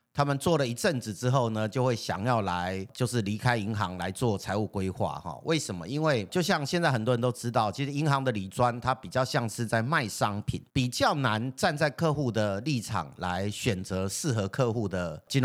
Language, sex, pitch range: Chinese, male, 105-145 Hz